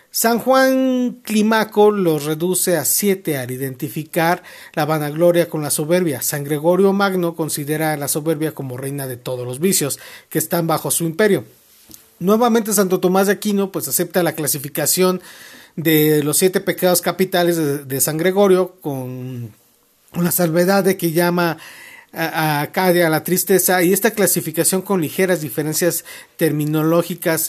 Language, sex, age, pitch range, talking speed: Spanish, male, 50-69, 150-190 Hz, 145 wpm